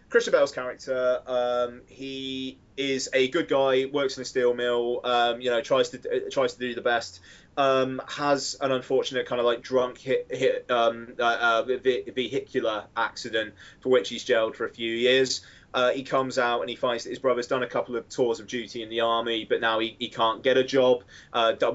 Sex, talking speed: male, 210 wpm